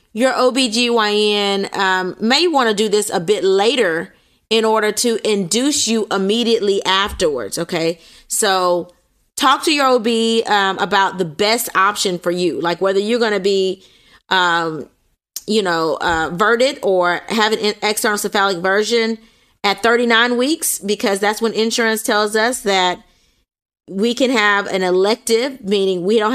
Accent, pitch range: American, 185-240 Hz